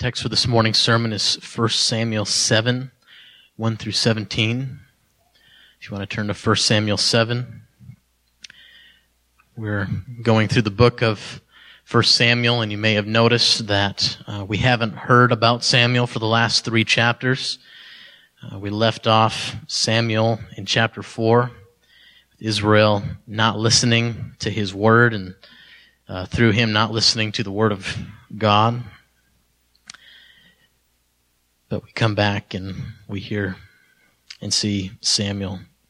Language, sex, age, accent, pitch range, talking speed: English, male, 30-49, American, 105-125 Hz, 135 wpm